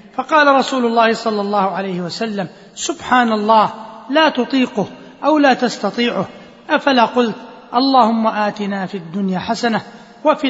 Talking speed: 125 wpm